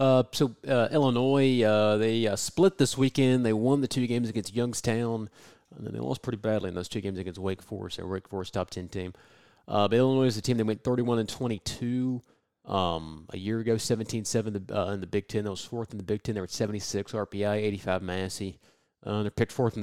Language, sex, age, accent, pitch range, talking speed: English, male, 30-49, American, 95-115 Hz, 225 wpm